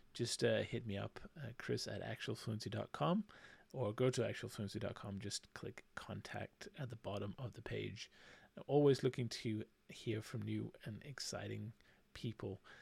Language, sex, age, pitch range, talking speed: English, male, 30-49, 110-125 Hz, 145 wpm